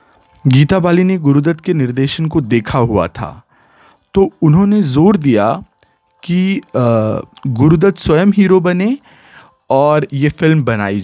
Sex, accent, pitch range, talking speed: male, native, 125-165 Hz, 125 wpm